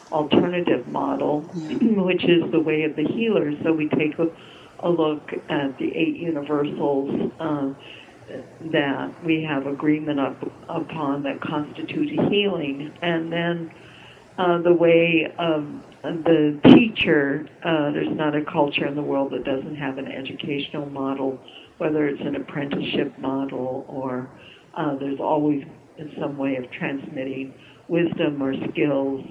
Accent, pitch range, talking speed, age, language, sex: American, 140-160 Hz, 140 wpm, 60-79, English, female